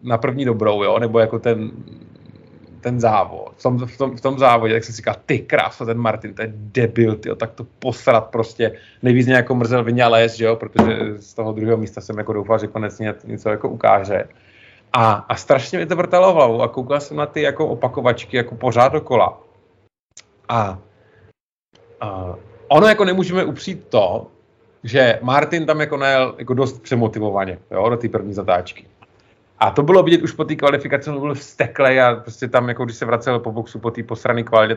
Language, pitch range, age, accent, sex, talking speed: Czech, 110-145 Hz, 30-49, native, male, 190 wpm